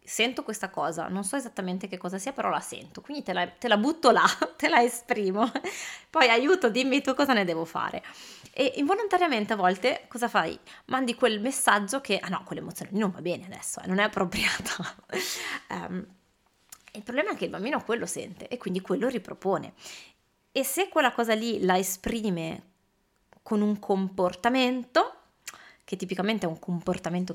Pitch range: 190-250 Hz